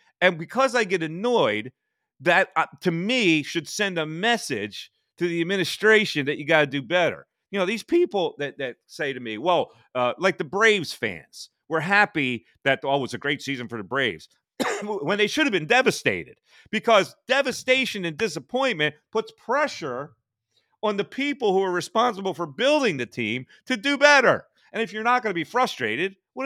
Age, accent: 40-59, American